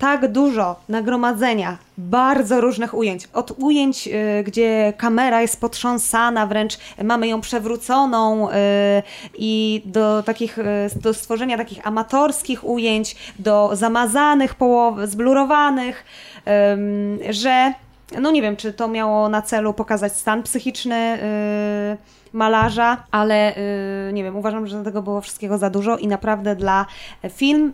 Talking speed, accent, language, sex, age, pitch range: 135 wpm, native, Polish, female, 20-39, 200-235 Hz